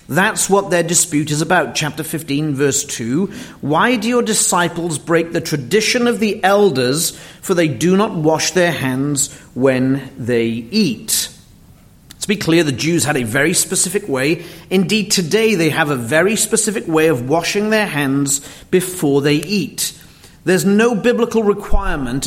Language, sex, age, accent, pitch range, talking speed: English, male, 40-59, British, 150-205 Hz, 160 wpm